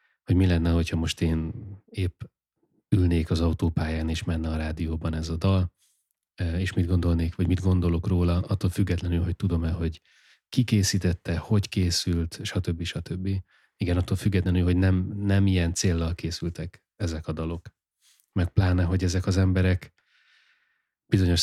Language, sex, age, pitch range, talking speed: Hungarian, male, 30-49, 85-95 Hz, 150 wpm